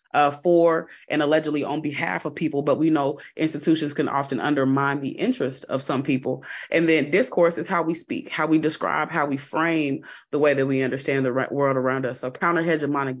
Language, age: English, 20-39